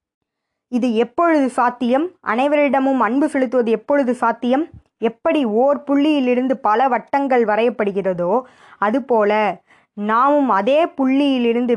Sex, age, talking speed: female, 20-39, 90 wpm